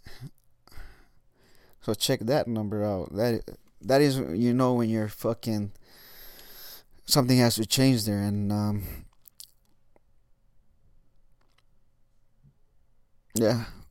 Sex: male